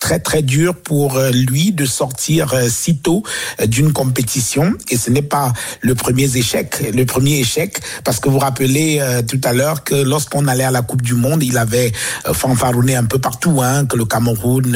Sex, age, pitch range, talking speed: male, 60-79, 115-135 Hz, 195 wpm